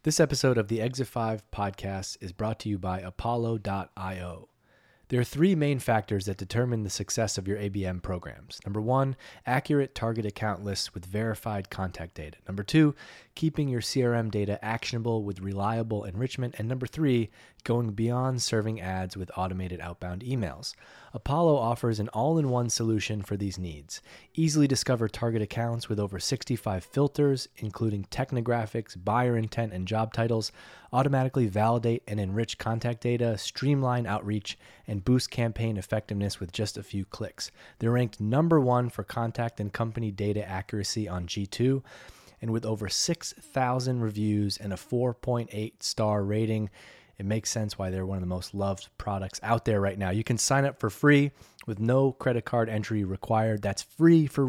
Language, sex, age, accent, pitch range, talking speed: English, male, 30-49, American, 100-125 Hz, 165 wpm